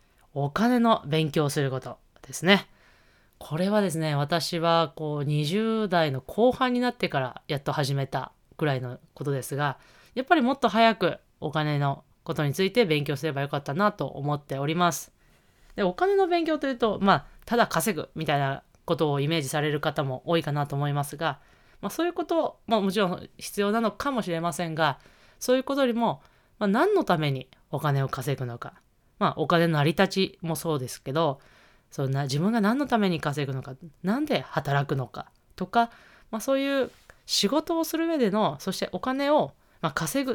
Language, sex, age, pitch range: Japanese, female, 20-39, 145-230 Hz